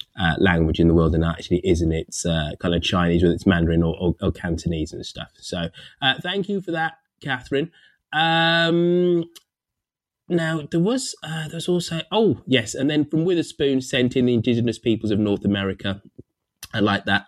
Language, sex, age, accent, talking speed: English, male, 20-39, British, 185 wpm